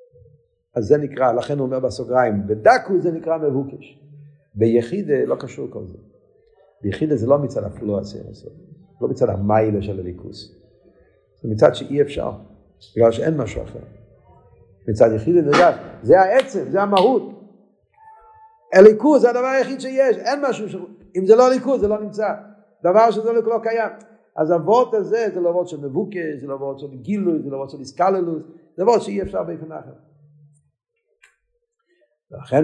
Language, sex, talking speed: Hebrew, male, 150 wpm